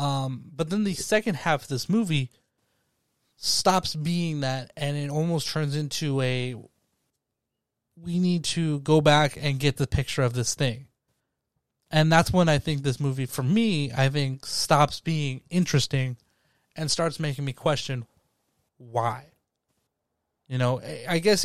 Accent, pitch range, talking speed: American, 130-150 Hz, 150 wpm